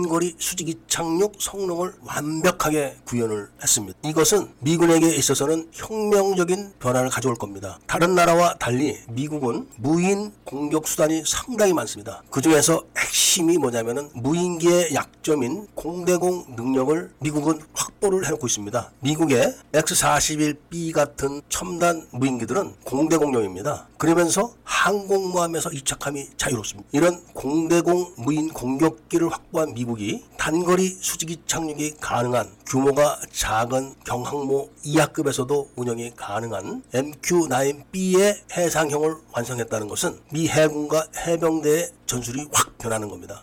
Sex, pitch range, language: male, 130-175 Hz, Korean